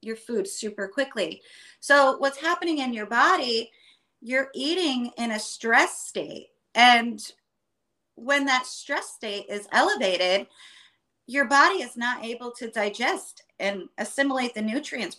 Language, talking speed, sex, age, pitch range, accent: English, 135 wpm, female, 30-49, 220-275 Hz, American